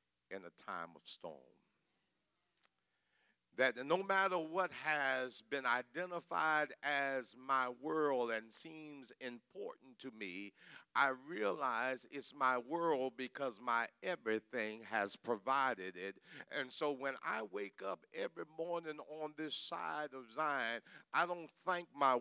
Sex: male